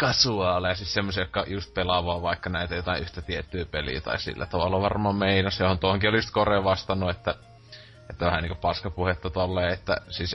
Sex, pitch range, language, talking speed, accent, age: male, 90-110 Hz, Finnish, 180 wpm, native, 20-39